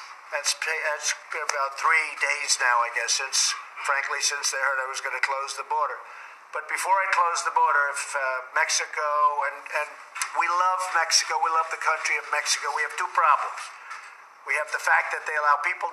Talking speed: 190 wpm